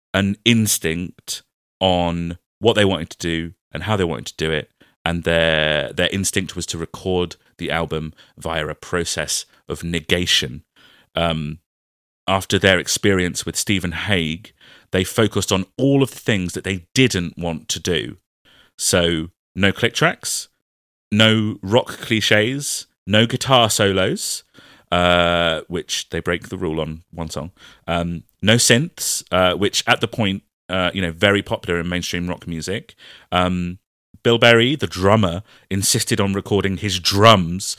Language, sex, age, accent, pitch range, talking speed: English, male, 30-49, British, 85-110 Hz, 150 wpm